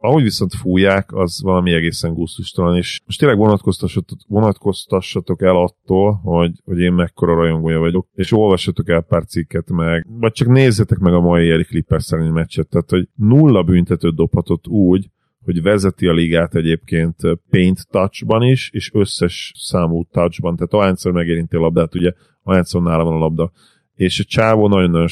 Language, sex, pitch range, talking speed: Hungarian, male, 85-100 Hz, 160 wpm